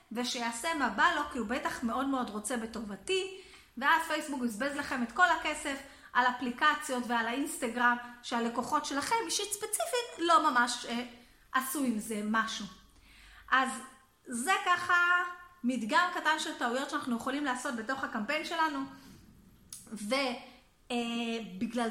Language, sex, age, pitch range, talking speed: Hebrew, female, 30-49, 240-320 Hz, 130 wpm